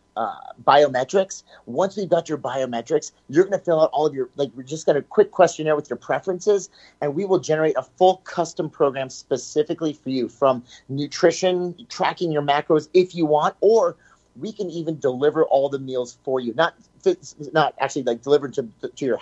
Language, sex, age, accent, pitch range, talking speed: English, male, 30-49, American, 135-180 Hz, 195 wpm